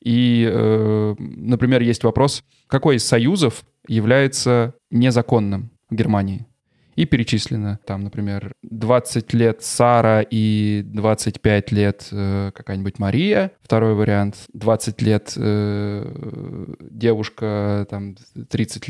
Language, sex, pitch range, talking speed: Russian, male, 105-125 Hz, 100 wpm